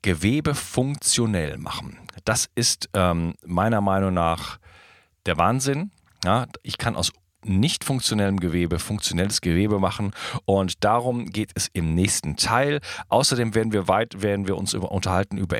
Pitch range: 90-120 Hz